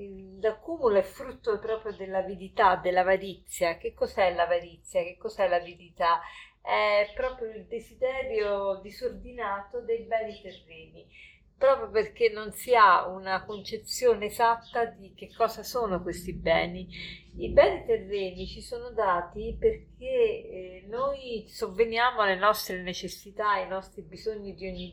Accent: native